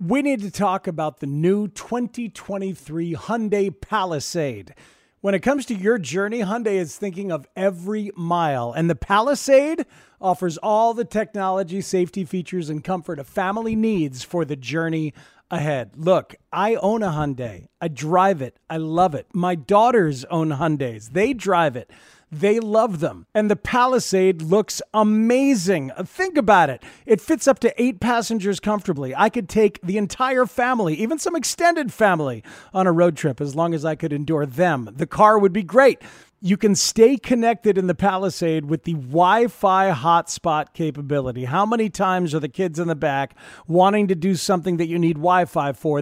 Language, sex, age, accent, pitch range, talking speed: English, male, 40-59, American, 160-210 Hz, 170 wpm